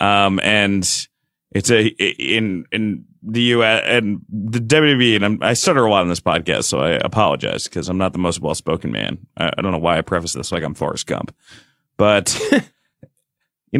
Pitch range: 105-135 Hz